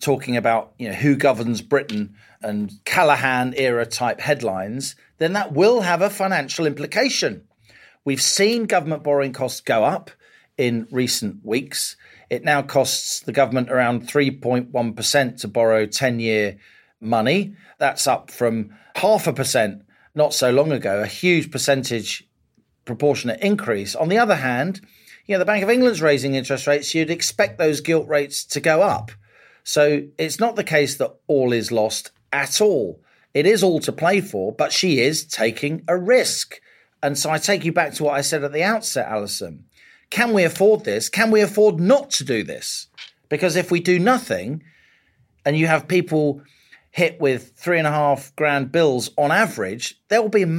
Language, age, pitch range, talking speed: English, 40-59, 125-170 Hz, 170 wpm